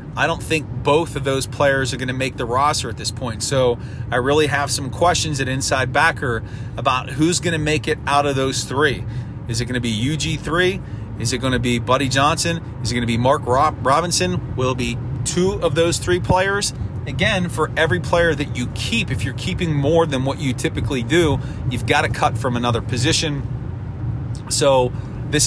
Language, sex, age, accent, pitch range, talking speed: English, male, 30-49, American, 120-140 Hz, 210 wpm